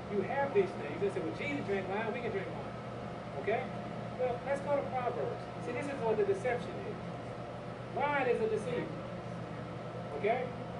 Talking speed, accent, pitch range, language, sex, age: 180 wpm, American, 195-250 Hz, English, male, 30-49